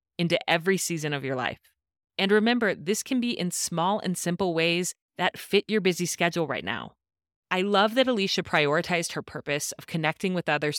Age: 30-49